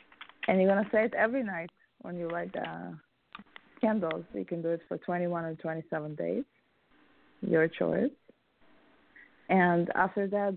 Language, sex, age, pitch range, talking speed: English, female, 20-39, 155-180 Hz, 155 wpm